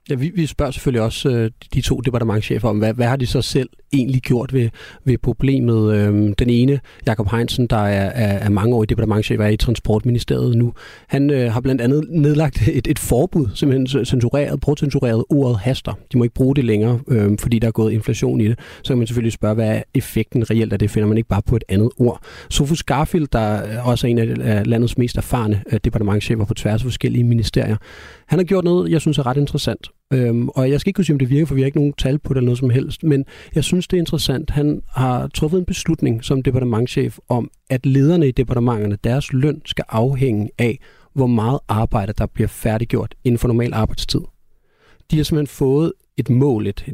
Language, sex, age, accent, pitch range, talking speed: Danish, male, 30-49, native, 110-140 Hz, 210 wpm